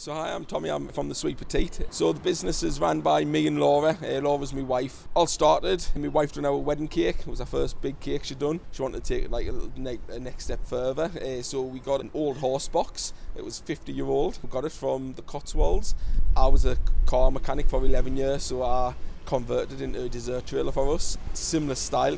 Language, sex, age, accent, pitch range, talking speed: English, male, 20-39, British, 120-135 Hz, 225 wpm